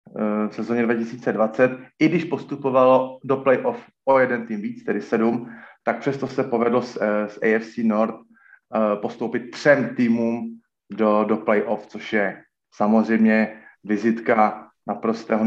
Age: 30-49